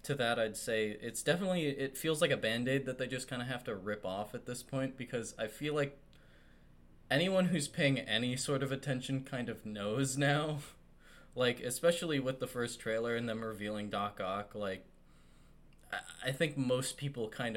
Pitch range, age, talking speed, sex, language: 95-125 Hz, 20-39, 190 wpm, male, English